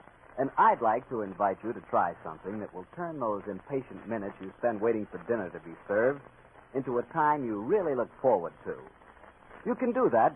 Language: English